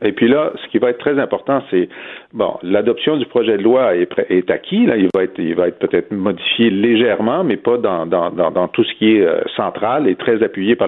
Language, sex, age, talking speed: French, male, 50-69, 250 wpm